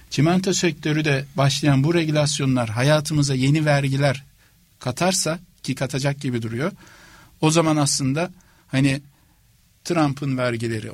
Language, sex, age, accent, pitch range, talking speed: Turkish, male, 60-79, native, 125-145 Hz, 110 wpm